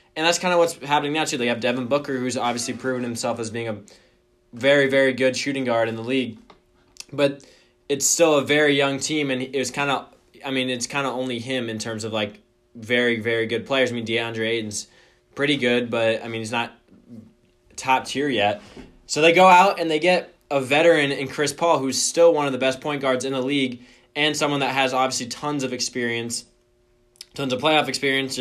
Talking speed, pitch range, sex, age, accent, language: 215 wpm, 120-140 Hz, male, 20-39, American, English